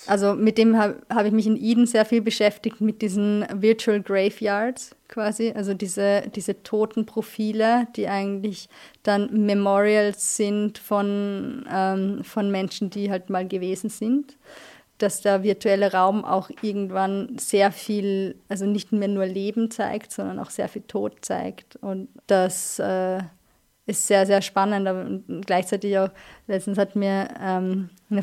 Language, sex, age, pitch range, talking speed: German, female, 20-39, 195-215 Hz, 145 wpm